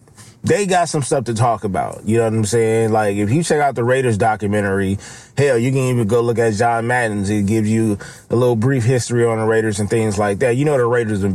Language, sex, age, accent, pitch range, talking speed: English, male, 30-49, American, 110-140 Hz, 255 wpm